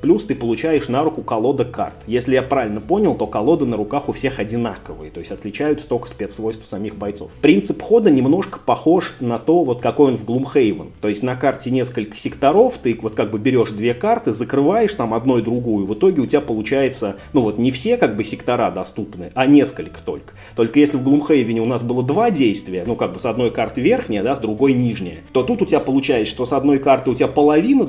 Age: 30-49